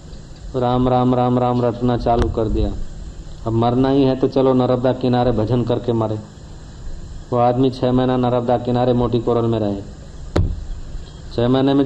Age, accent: 40-59, native